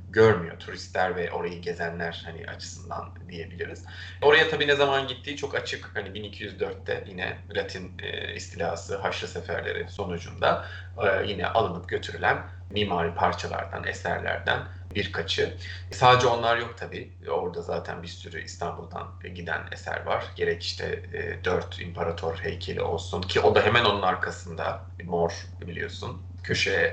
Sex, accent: male, native